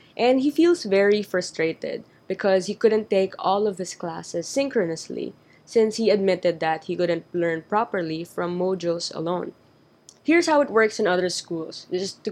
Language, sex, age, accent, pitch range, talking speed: English, female, 20-39, Filipino, 175-220 Hz, 165 wpm